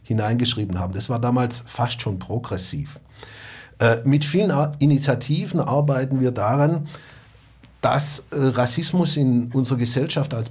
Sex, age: male, 50-69